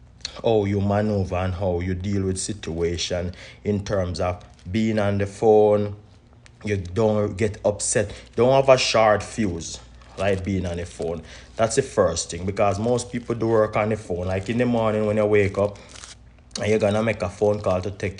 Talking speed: 195 wpm